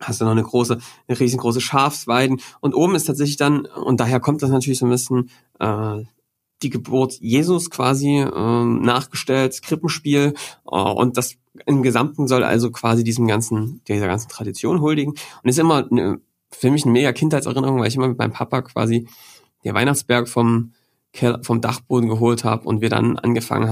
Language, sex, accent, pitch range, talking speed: German, male, German, 115-135 Hz, 180 wpm